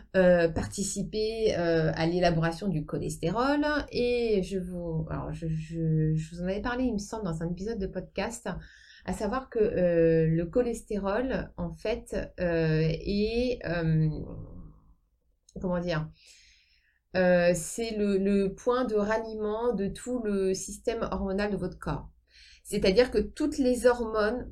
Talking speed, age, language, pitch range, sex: 145 wpm, 30-49, French, 165-215 Hz, female